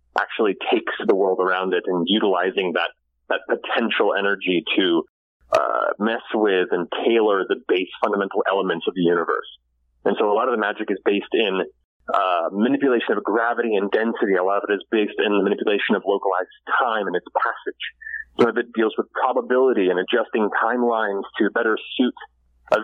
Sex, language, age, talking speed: male, English, 30-49, 180 wpm